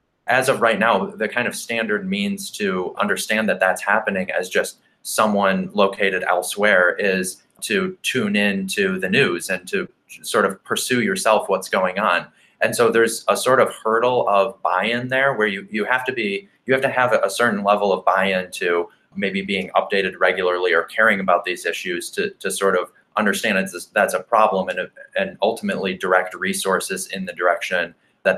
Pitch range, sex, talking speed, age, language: 95-135 Hz, male, 185 wpm, 20-39, English